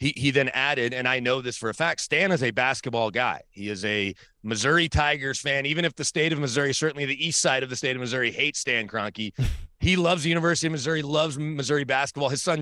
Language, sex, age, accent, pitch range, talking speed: English, male, 30-49, American, 120-140 Hz, 245 wpm